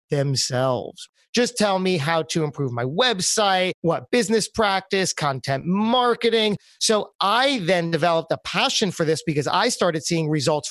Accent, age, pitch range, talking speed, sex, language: American, 30-49, 155-205 Hz, 150 wpm, male, English